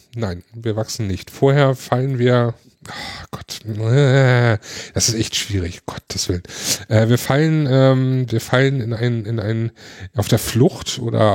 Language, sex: German, male